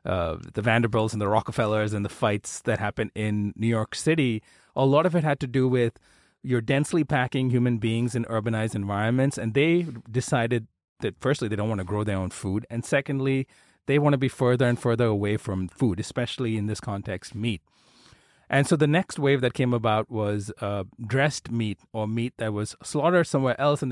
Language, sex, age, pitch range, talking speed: English, male, 30-49, 100-135 Hz, 205 wpm